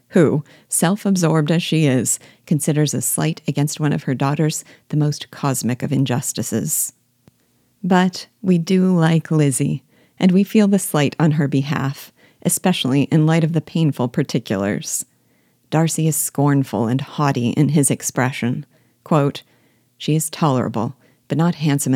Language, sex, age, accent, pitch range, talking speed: English, female, 50-69, American, 135-160 Hz, 145 wpm